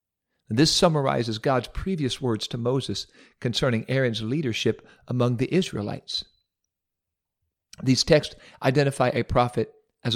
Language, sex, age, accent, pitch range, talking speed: English, male, 50-69, American, 105-145 Hz, 110 wpm